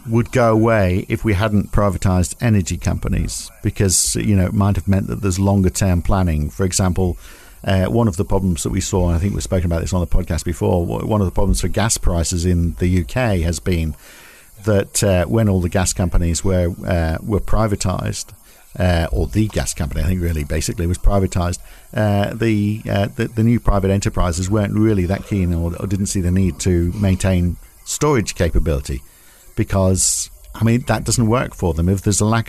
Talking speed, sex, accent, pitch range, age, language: 200 wpm, male, British, 85-110 Hz, 50-69, English